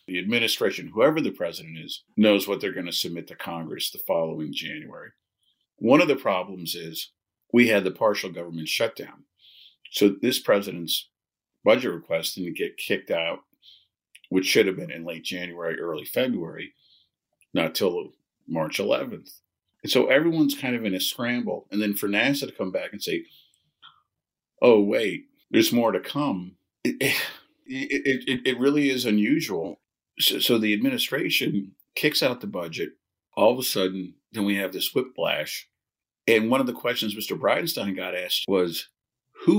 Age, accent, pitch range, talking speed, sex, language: 50-69, American, 95-125 Hz, 165 wpm, male, English